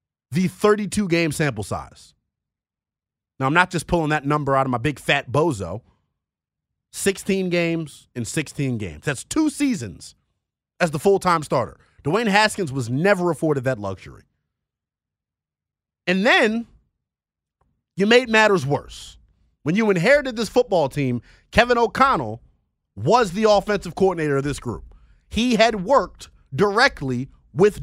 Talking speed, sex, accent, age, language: 135 wpm, male, American, 30-49, English